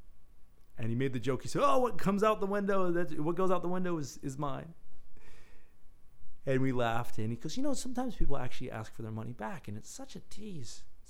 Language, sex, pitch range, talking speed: English, male, 90-150 Hz, 230 wpm